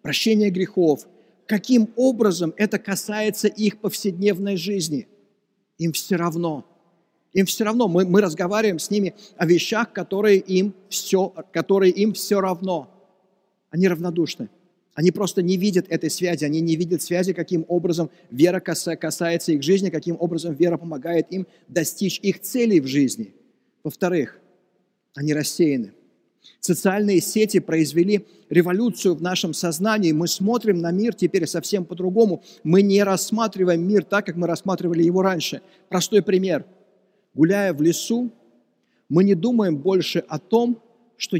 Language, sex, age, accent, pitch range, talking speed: Russian, male, 50-69, native, 165-200 Hz, 135 wpm